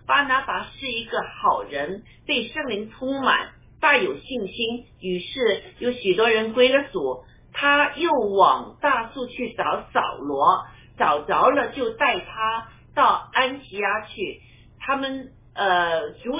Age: 50-69